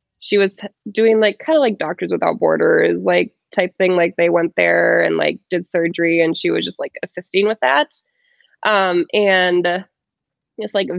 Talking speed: 180 wpm